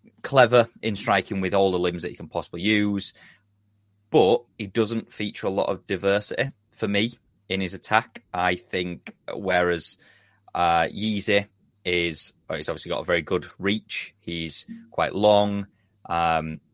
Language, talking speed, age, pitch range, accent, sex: English, 150 wpm, 20-39, 85-100 Hz, British, male